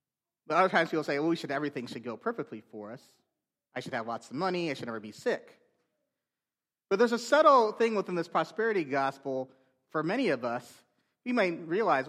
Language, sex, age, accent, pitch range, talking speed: English, male, 30-49, American, 120-160 Hz, 205 wpm